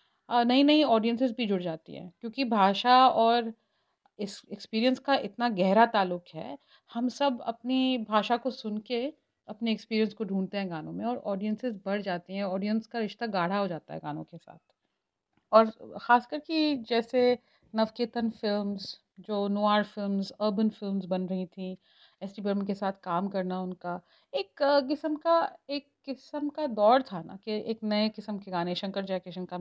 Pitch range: 195-255 Hz